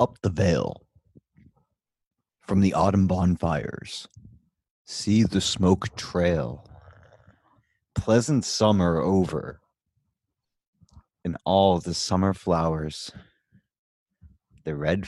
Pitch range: 85-105 Hz